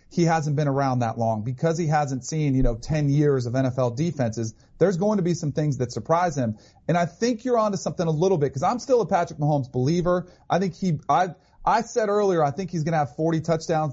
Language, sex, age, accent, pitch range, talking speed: English, male, 40-59, American, 140-180 Hz, 240 wpm